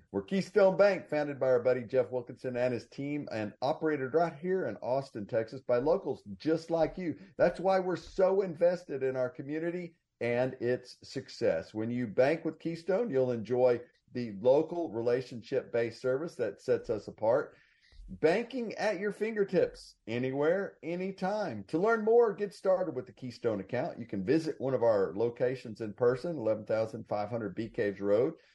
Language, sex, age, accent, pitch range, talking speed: English, male, 50-69, American, 120-175 Hz, 165 wpm